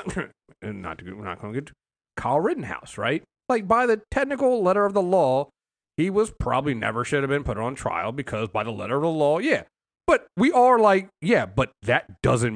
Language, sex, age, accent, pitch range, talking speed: English, male, 30-49, American, 120-165 Hz, 220 wpm